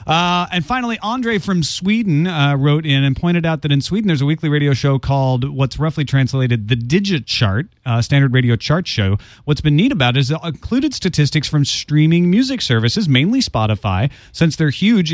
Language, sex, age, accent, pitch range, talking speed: English, male, 30-49, American, 120-160 Hz, 195 wpm